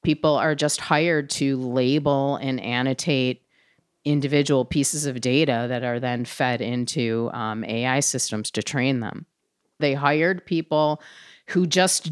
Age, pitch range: 30-49, 125-155 Hz